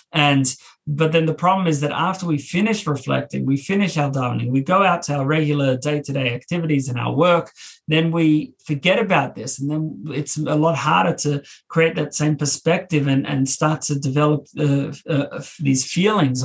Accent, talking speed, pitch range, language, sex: Australian, 185 wpm, 135-160 Hz, English, male